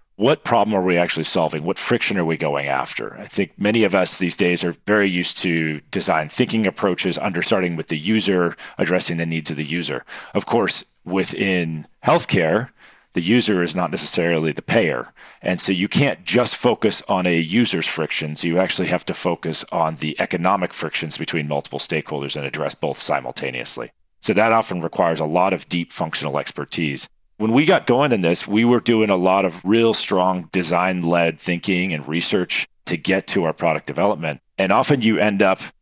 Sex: male